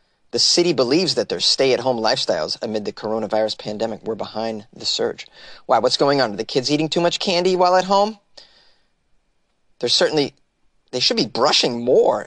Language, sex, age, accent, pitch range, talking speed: English, male, 30-49, American, 125-165 Hz, 175 wpm